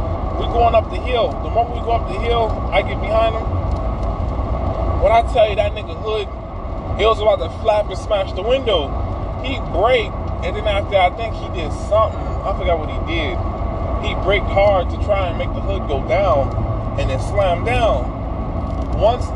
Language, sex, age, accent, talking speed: English, male, 20-39, American, 195 wpm